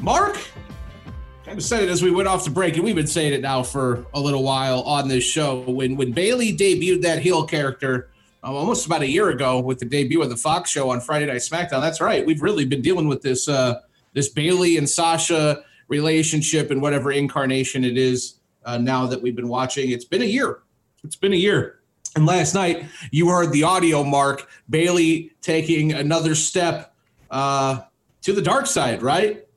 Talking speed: 205 wpm